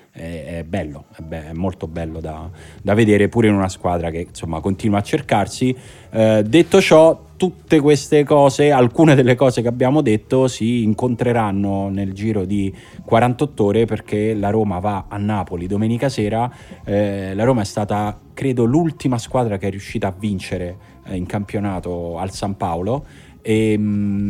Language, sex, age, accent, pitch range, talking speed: Italian, male, 30-49, native, 85-115 Hz, 160 wpm